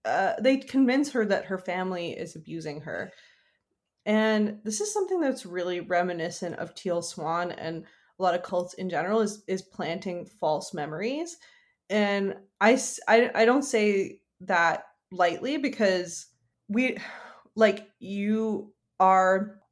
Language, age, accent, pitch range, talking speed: English, 20-39, American, 175-220 Hz, 135 wpm